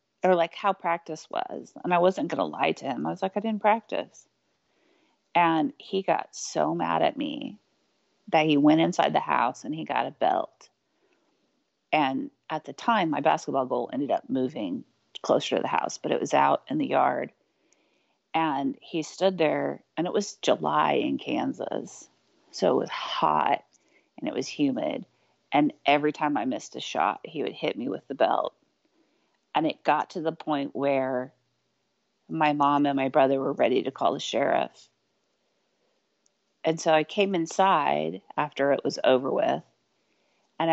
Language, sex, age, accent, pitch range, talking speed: English, female, 30-49, American, 140-195 Hz, 175 wpm